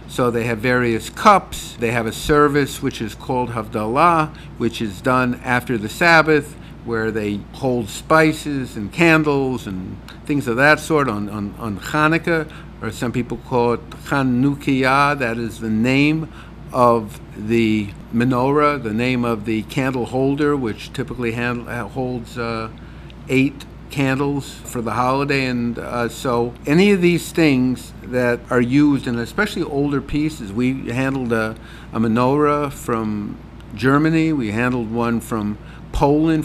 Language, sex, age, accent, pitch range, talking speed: English, male, 50-69, American, 115-145 Hz, 145 wpm